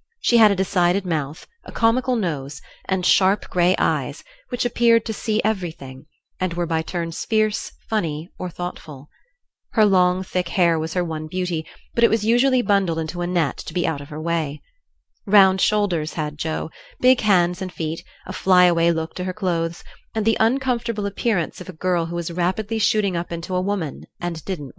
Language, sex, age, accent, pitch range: Korean, female, 30-49, American, 160-210 Hz